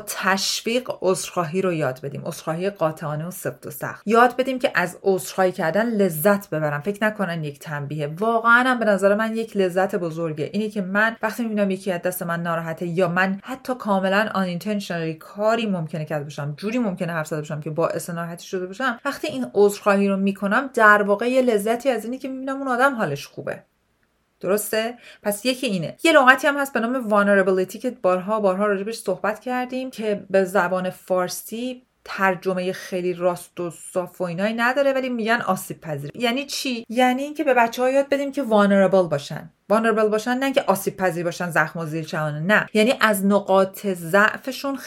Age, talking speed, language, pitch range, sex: 40-59, 180 wpm, Persian, 180-240 Hz, female